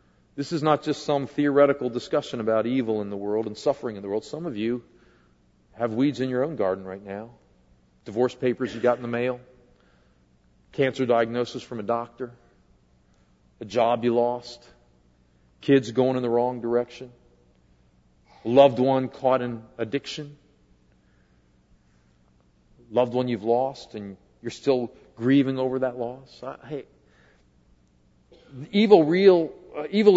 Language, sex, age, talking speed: English, male, 40-59, 145 wpm